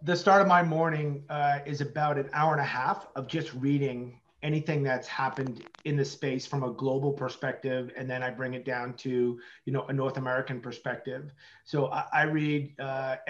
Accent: American